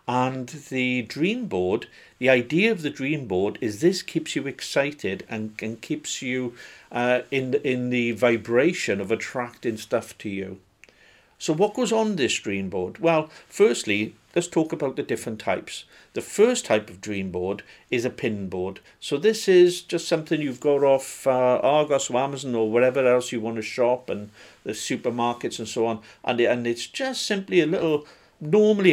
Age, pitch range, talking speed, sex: 50-69, 110-150 Hz, 180 wpm, male